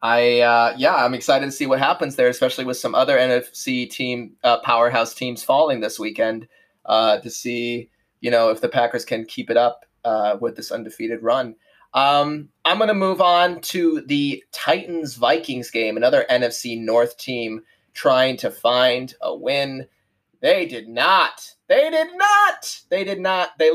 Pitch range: 120-165 Hz